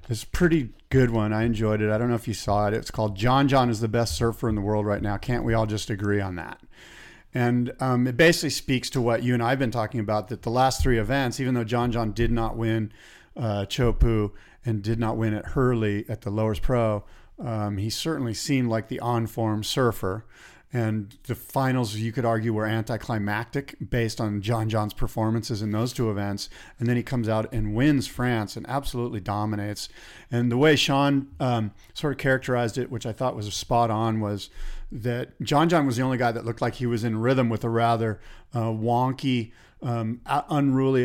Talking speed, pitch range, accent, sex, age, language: 210 wpm, 110-125 Hz, American, male, 40-59, English